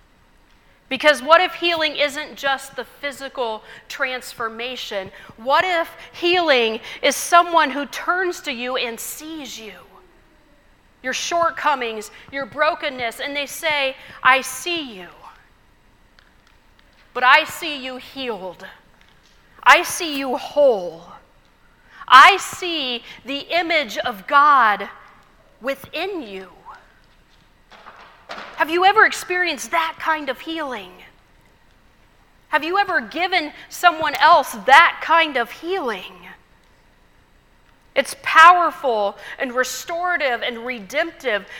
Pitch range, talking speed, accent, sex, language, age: 255-335 Hz, 105 wpm, American, female, English, 40-59